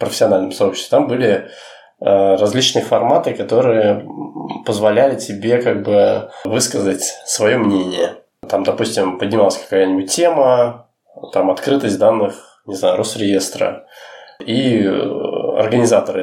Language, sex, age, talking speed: Russian, male, 20-39, 100 wpm